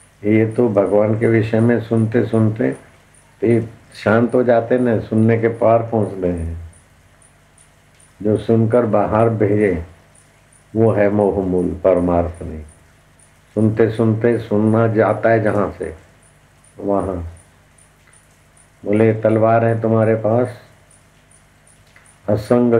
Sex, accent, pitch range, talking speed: male, native, 100-115 Hz, 110 wpm